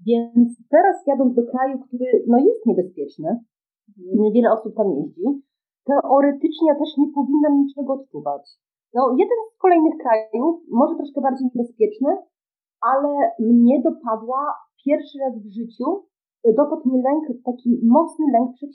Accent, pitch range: native, 215-280 Hz